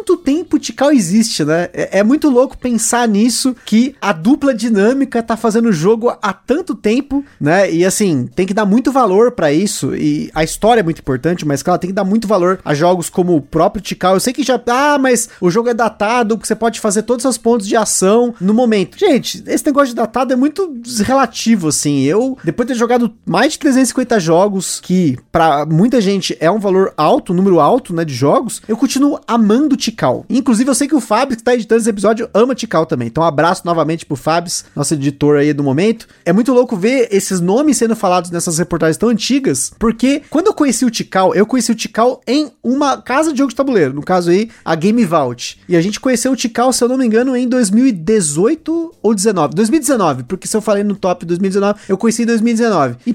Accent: Brazilian